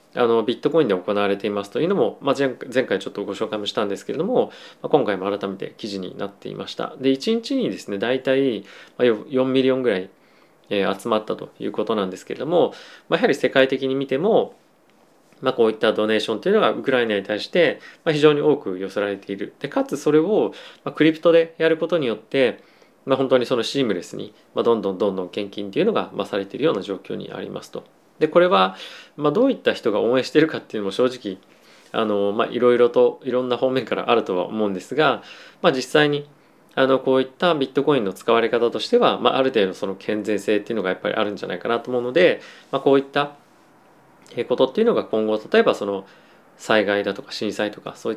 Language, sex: Japanese, male